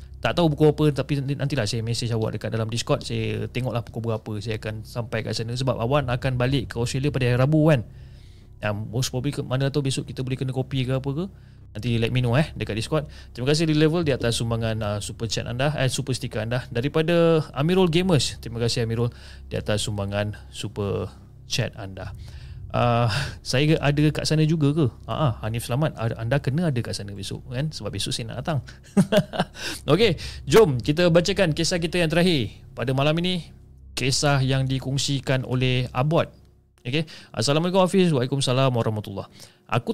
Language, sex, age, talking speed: Malay, male, 30-49, 185 wpm